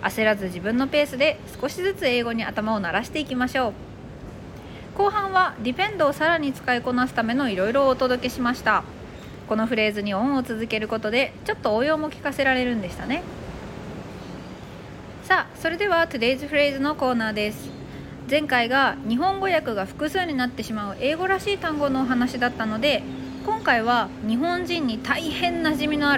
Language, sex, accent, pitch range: Japanese, female, native, 215-300 Hz